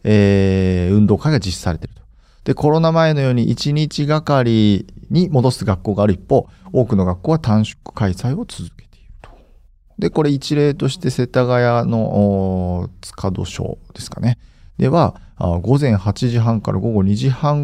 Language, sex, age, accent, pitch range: Japanese, male, 40-59, native, 95-130 Hz